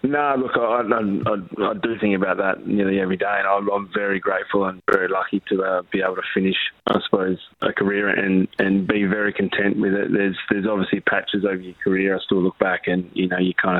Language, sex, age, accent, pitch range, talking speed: English, male, 20-39, Australian, 95-105 Hz, 240 wpm